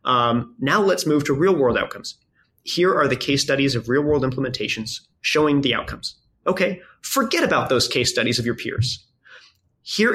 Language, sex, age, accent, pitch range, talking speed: English, male, 30-49, American, 120-150 Hz, 165 wpm